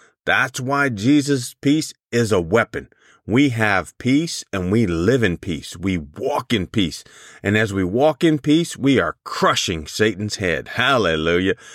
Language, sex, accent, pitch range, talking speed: English, male, American, 95-125 Hz, 160 wpm